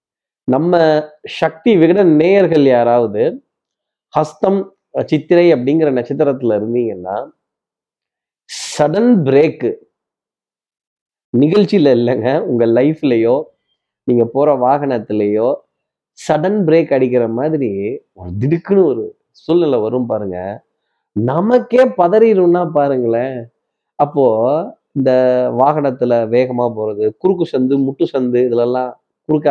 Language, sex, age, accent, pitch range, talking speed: Tamil, male, 30-49, native, 115-155 Hz, 80 wpm